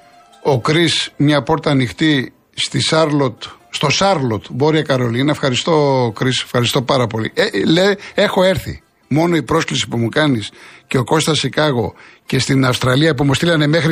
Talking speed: 155 wpm